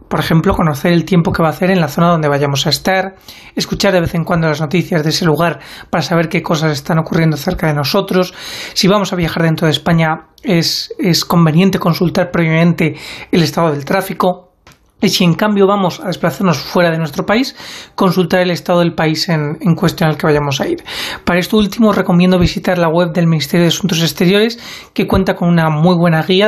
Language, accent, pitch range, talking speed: Spanish, Spanish, 165-195 Hz, 215 wpm